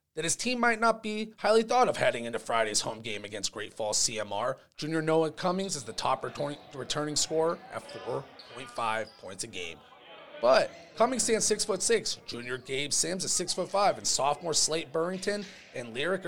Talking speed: 180 wpm